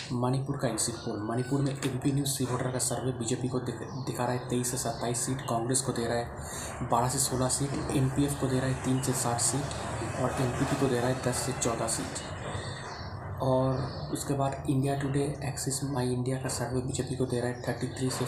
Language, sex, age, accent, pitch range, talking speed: Hindi, male, 30-49, native, 120-135 Hz, 215 wpm